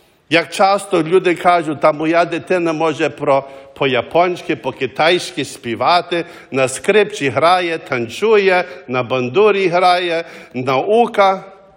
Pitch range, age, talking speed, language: 175-230 Hz, 50-69, 100 wpm, English